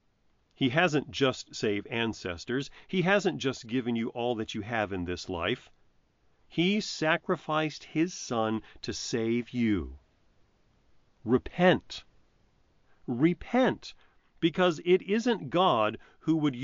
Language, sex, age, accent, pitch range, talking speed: English, male, 40-59, American, 105-165 Hz, 115 wpm